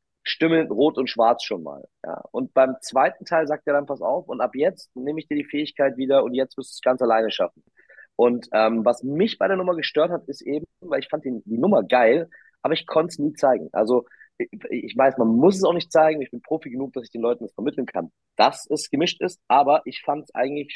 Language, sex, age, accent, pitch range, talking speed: German, male, 30-49, German, 120-155 Hz, 250 wpm